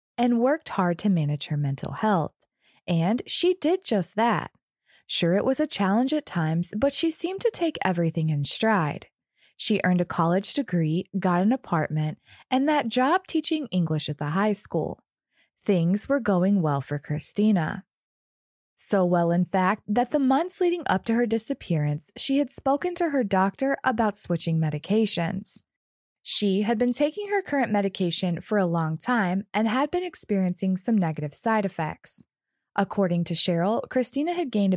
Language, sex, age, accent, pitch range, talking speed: English, female, 20-39, American, 170-255 Hz, 165 wpm